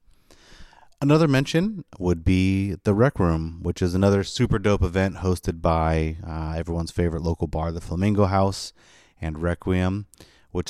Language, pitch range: English, 85-100 Hz